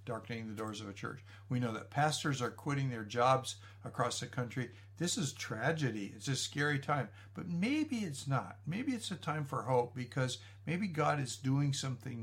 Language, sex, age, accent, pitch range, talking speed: English, male, 60-79, American, 110-145 Hz, 195 wpm